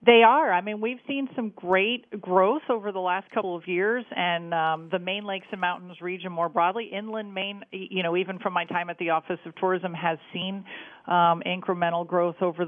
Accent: American